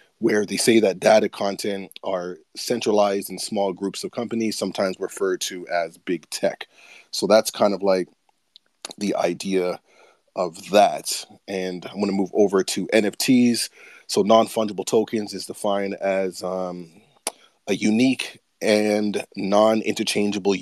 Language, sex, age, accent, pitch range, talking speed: English, male, 30-49, American, 95-110 Hz, 135 wpm